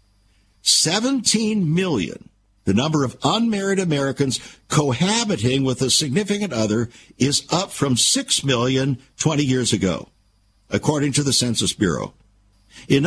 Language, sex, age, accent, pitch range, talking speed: English, male, 60-79, American, 100-155 Hz, 120 wpm